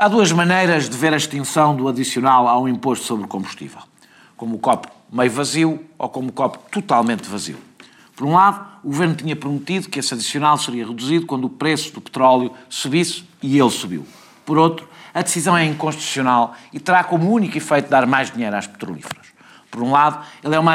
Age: 50-69